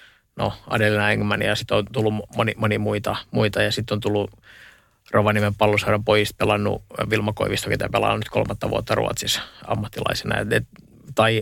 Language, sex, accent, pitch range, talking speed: Finnish, male, native, 105-115 Hz, 160 wpm